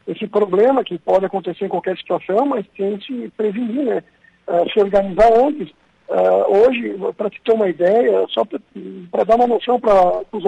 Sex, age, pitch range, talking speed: male, 60-79, 190-245 Hz, 180 wpm